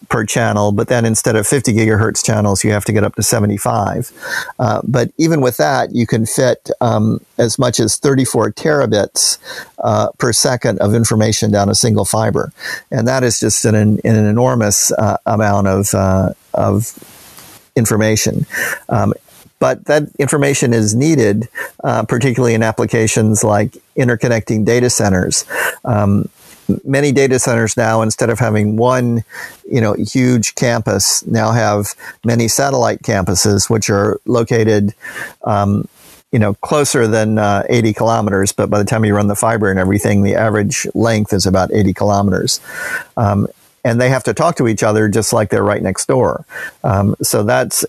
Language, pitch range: English, 105-120 Hz